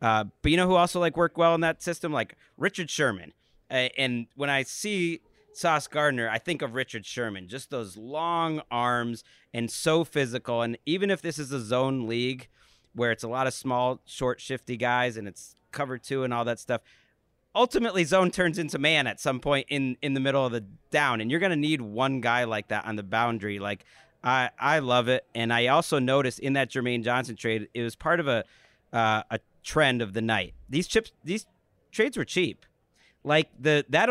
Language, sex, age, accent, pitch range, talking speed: English, male, 30-49, American, 120-155 Hz, 210 wpm